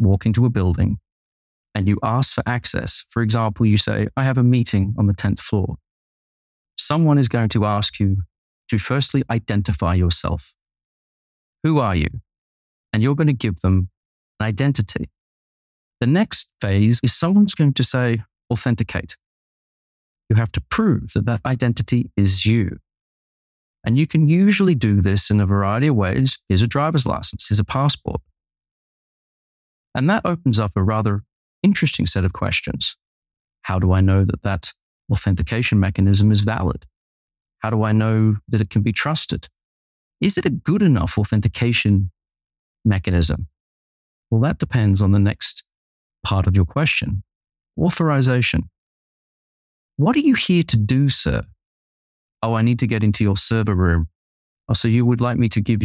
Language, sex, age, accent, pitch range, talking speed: English, male, 30-49, British, 95-120 Hz, 160 wpm